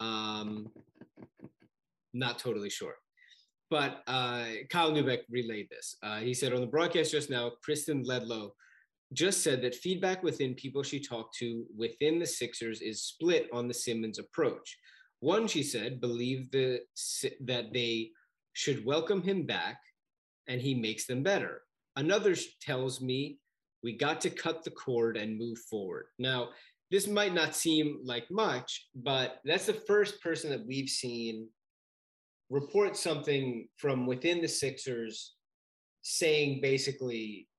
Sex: male